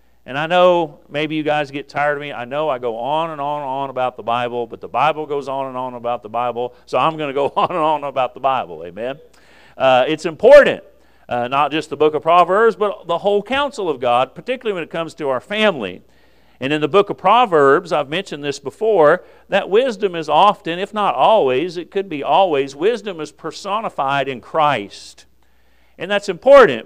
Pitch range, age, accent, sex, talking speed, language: 140-195 Hz, 50-69, American, male, 215 wpm, English